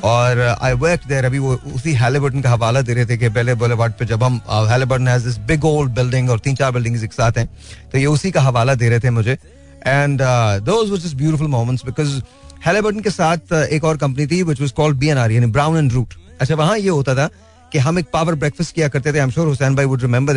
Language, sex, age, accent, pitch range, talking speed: Hindi, male, 30-49, native, 120-150 Hz, 205 wpm